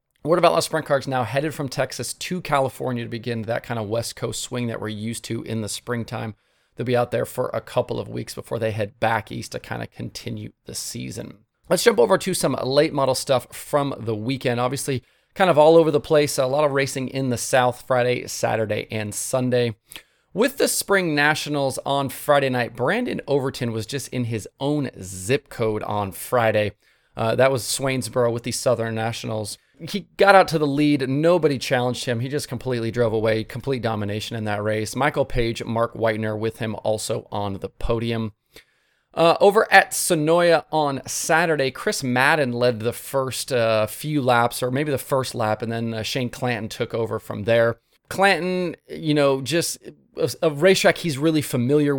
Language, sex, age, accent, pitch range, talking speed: English, male, 30-49, American, 115-145 Hz, 195 wpm